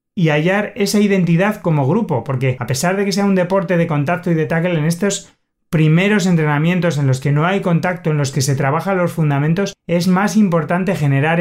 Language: Spanish